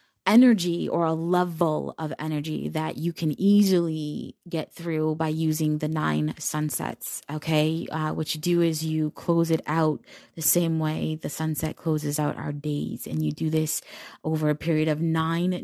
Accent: American